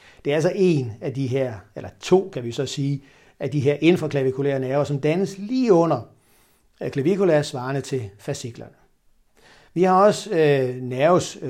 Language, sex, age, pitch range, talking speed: Danish, male, 60-79, 130-160 Hz, 160 wpm